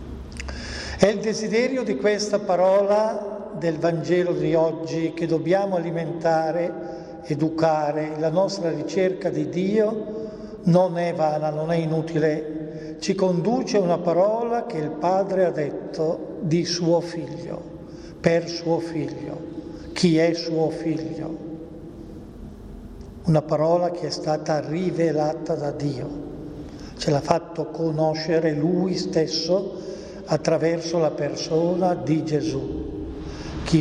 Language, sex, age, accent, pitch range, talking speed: Italian, male, 50-69, native, 155-175 Hz, 115 wpm